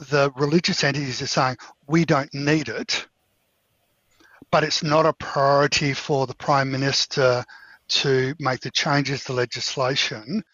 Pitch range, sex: 130-160 Hz, male